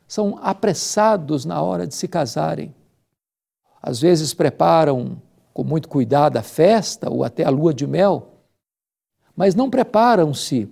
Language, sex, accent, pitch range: Portuguese, male, Brazilian, 155-210 Hz